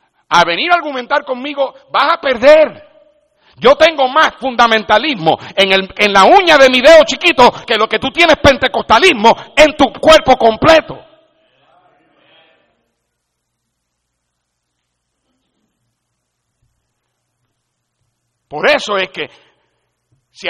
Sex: male